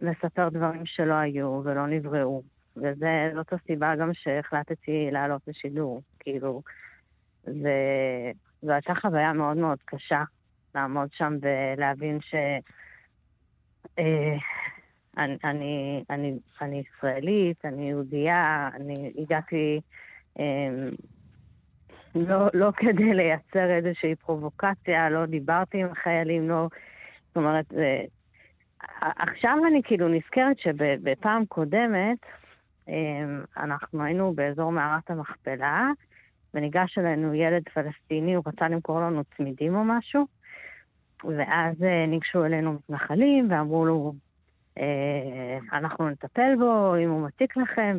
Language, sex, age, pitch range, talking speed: English, female, 30-49, 145-175 Hz, 100 wpm